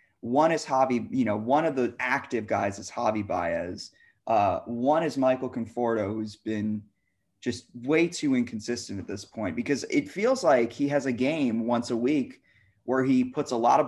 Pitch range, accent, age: 115-145 Hz, American, 20-39